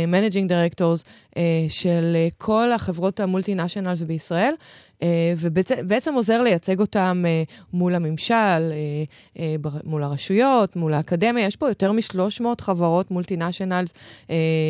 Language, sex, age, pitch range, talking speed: Hebrew, female, 20-39, 165-215 Hz, 95 wpm